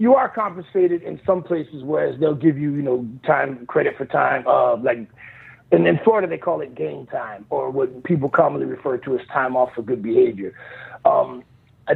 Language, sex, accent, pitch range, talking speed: English, male, American, 145-195 Hz, 195 wpm